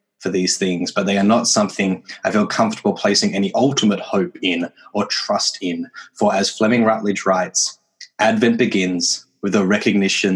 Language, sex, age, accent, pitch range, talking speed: English, male, 20-39, Australian, 100-125 Hz, 170 wpm